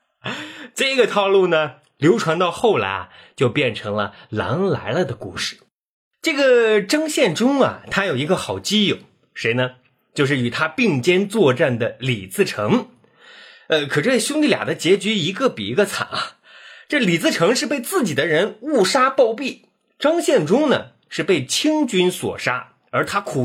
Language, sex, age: Chinese, male, 30-49